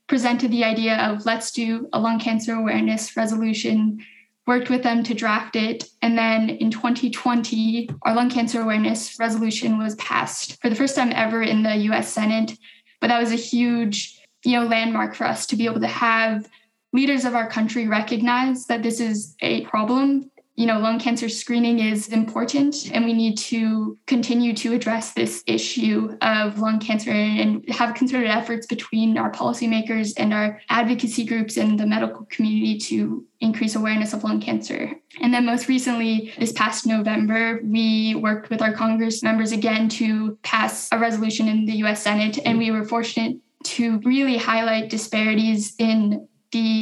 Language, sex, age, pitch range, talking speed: English, female, 10-29, 220-235 Hz, 170 wpm